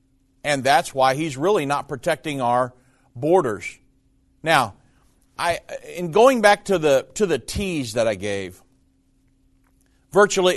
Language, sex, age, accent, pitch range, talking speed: English, male, 50-69, American, 130-170 Hz, 130 wpm